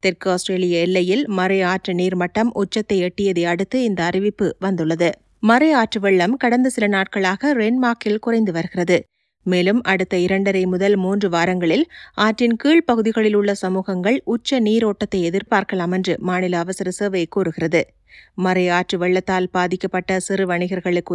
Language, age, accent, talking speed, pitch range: Tamil, 30-49, native, 125 wpm, 115-190 Hz